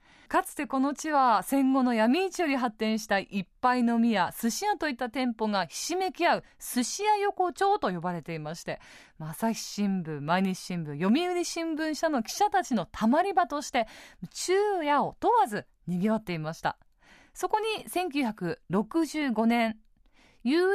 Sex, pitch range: female, 210-345 Hz